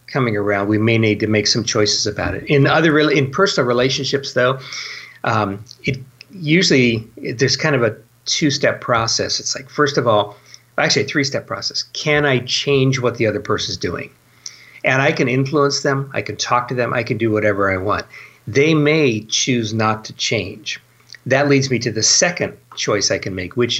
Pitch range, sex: 110-140 Hz, male